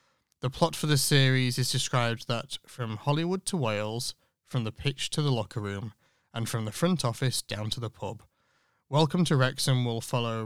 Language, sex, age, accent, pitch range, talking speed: English, male, 30-49, British, 115-140 Hz, 190 wpm